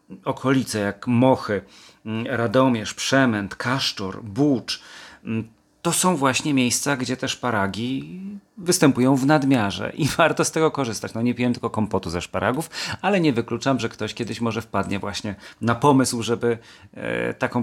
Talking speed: 140 wpm